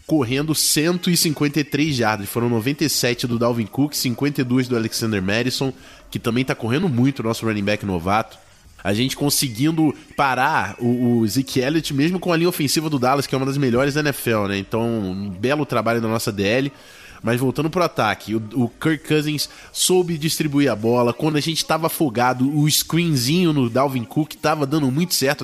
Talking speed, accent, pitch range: 185 wpm, Brazilian, 115-145 Hz